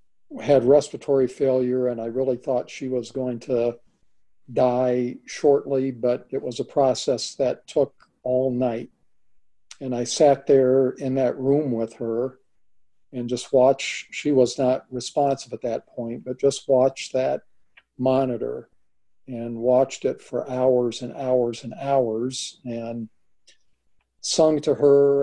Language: English